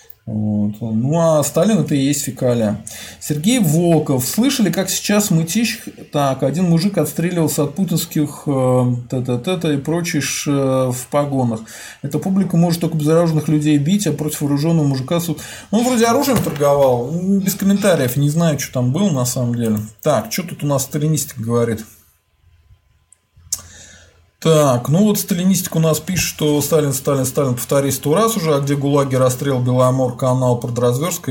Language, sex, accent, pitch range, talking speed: Russian, male, native, 115-170 Hz, 155 wpm